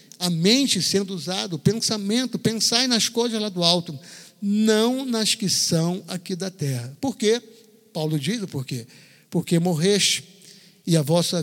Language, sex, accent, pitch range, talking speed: Portuguese, male, Brazilian, 155-200 Hz, 160 wpm